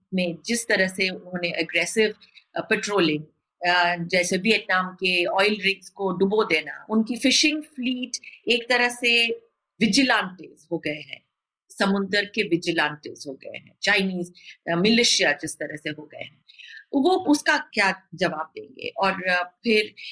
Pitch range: 185-260 Hz